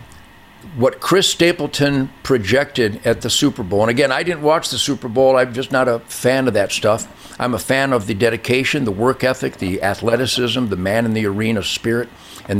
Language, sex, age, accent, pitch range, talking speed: English, male, 60-79, American, 105-135 Hz, 200 wpm